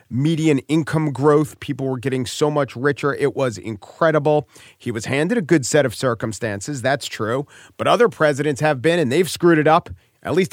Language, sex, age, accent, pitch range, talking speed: English, male, 40-59, American, 130-185 Hz, 195 wpm